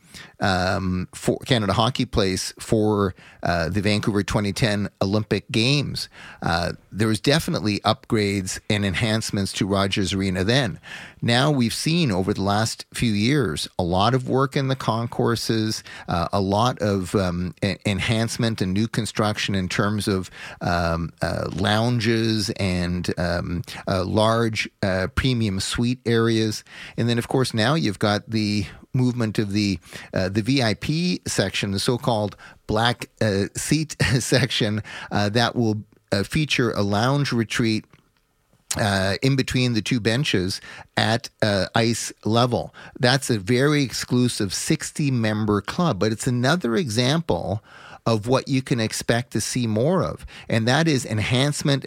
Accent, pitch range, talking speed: American, 100-125 Hz, 140 wpm